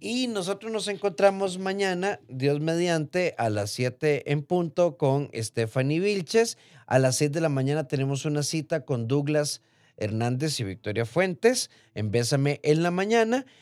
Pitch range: 115-165 Hz